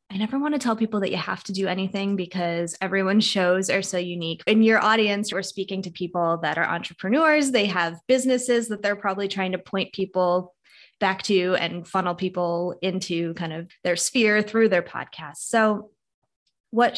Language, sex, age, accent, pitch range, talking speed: English, female, 20-39, American, 175-215 Hz, 185 wpm